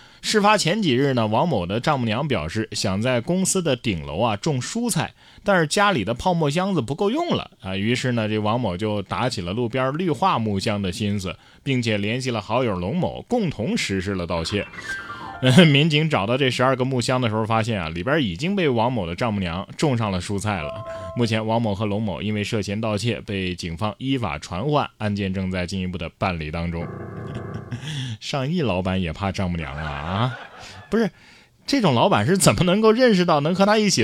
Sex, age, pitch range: male, 20-39, 105-160 Hz